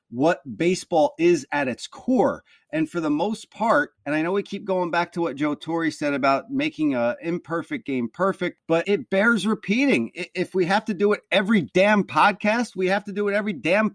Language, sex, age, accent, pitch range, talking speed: English, male, 30-49, American, 170-230 Hz, 210 wpm